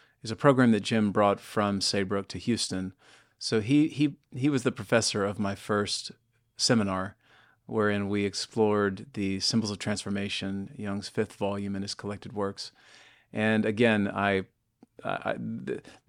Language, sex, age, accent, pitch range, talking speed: English, male, 40-59, American, 100-115 Hz, 155 wpm